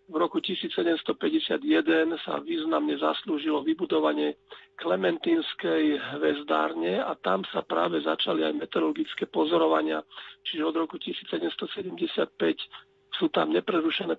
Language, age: Slovak, 50-69